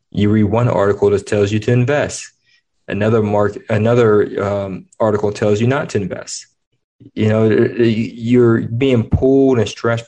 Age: 20-39